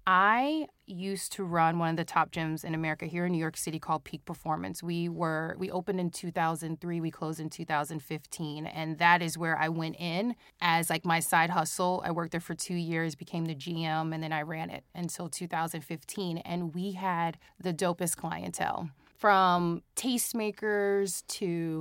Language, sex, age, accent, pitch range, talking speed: English, female, 30-49, American, 165-195 Hz, 180 wpm